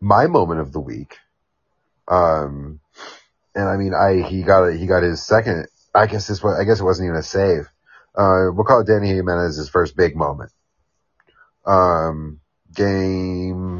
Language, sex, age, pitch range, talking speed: English, male, 30-49, 80-105 Hz, 165 wpm